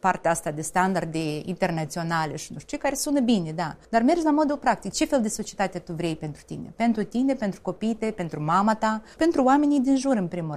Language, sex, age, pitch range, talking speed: Romanian, female, 30-49, 180-240 Hz, 215 wpm